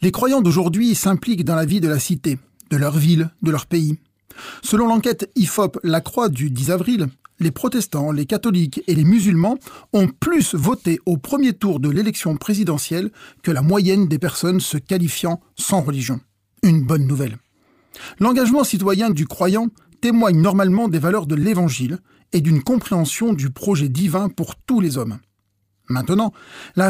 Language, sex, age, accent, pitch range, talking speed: French, male, 40-59, French, 150-210 Hz, 165 wpm